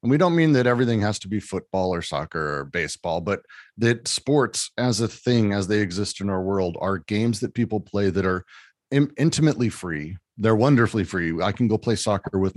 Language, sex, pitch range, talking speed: English, male, 95-120 Hz, 210 wpm